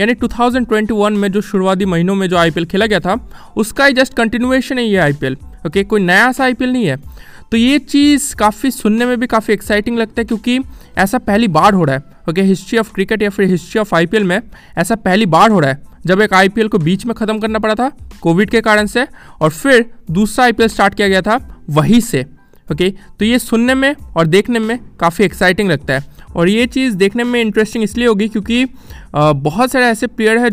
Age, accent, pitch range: 20-39, native, 185-235 Hz